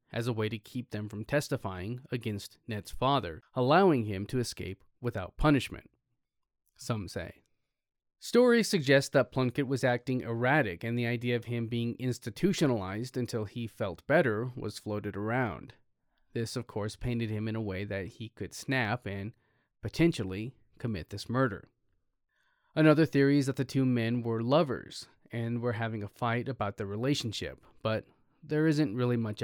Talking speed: 160 wpm